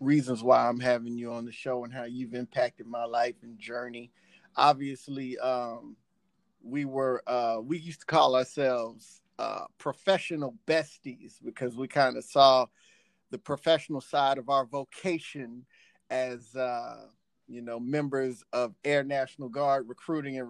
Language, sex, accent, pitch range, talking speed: English, male, American, 125-150 Hz, 150 wpm